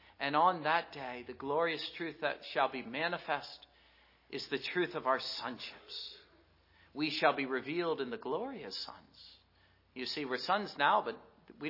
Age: 40-59